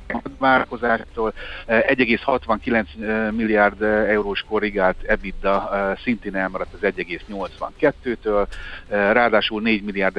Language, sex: Hungarian, male